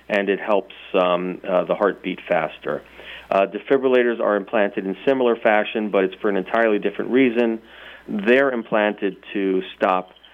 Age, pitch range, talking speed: 40-59, 95-115 Hz, 155 wpm